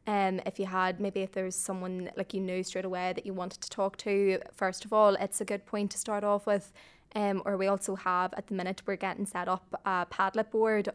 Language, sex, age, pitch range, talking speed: English, female, 20-39, 190-205 Hz, 245 wpm